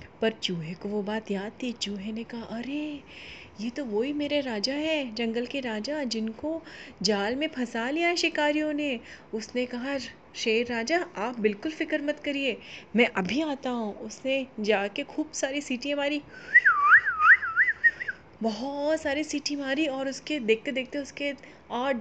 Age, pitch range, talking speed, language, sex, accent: 30-49, 225-290 Hz, 70 wpm, Hindi, female, native